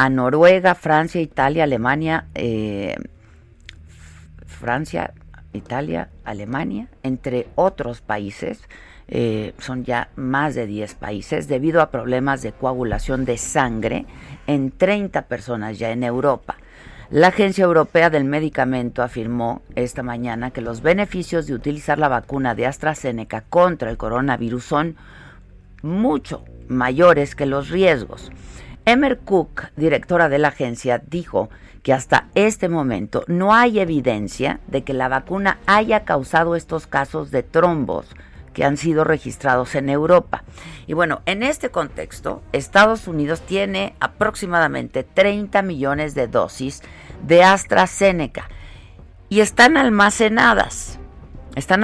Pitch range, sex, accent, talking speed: 120-175 Hz, female, Mexican, 125 wpm